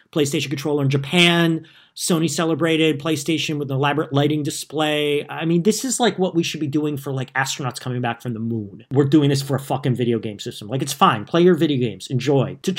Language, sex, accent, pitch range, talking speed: English, male, American, 125-160 Hz, 225 wpm